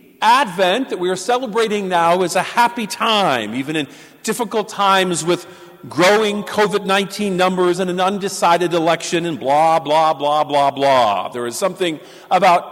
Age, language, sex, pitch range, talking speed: 50-69, English, male, 175-230 Hz, 150 wpm